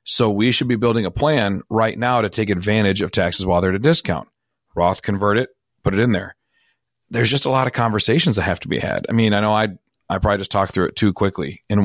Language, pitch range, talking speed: English, 100-120 Hz, 255 wpm